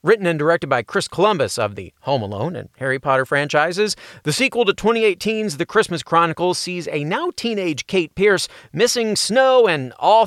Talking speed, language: 175 wpm, English